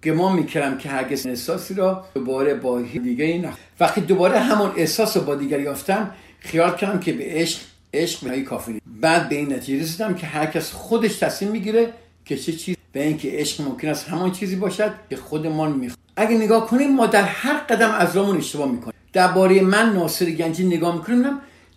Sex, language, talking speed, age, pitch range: male, Persian, 185 wpm, 50-69, 135-190 Hz